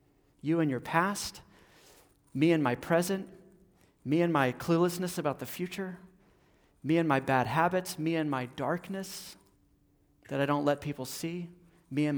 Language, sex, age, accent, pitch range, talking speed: English, male, 40-59, American, 140-185 Hz, 160 wpm